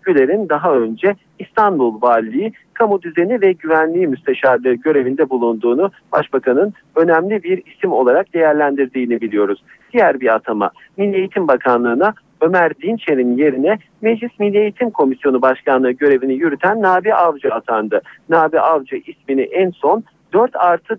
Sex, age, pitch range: male, 50-69, 130-200 Hz